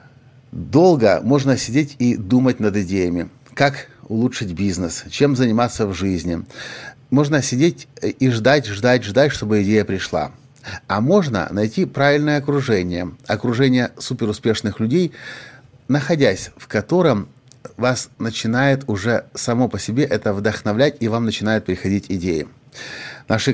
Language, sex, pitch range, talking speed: Russian, male, 105-135 Hz, 120 wpm